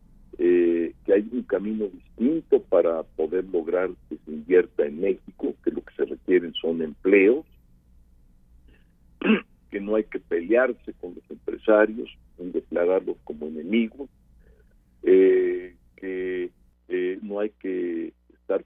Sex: male